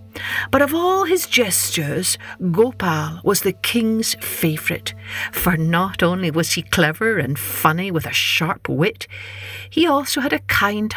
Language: English